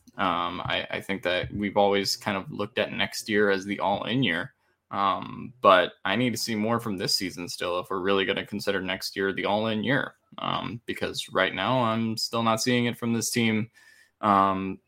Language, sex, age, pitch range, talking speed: English, male, 10-29, 100-115 Hz, 220 wpm